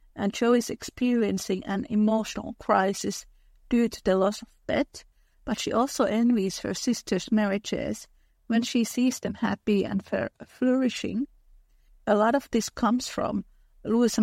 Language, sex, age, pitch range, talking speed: English, female, 50-69, 210-245 Hz, 145 wpm